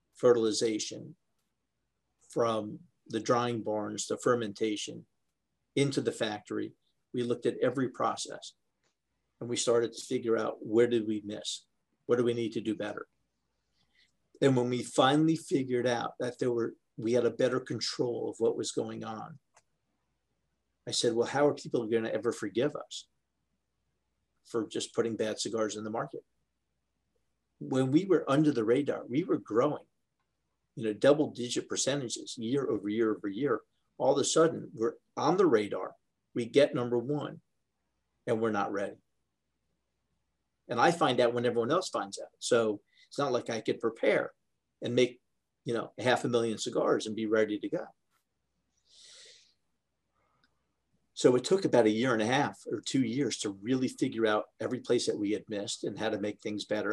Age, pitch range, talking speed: 50-69, 110-135 Hz, 170 wpm